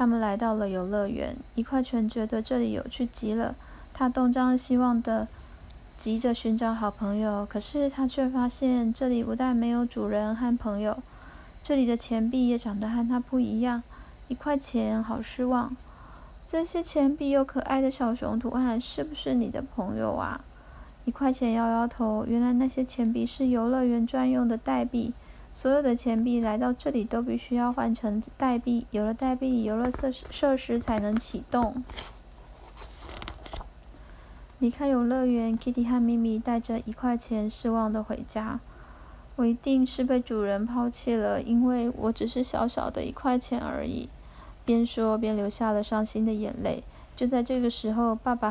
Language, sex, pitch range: Chinese, female, 225-255 Hz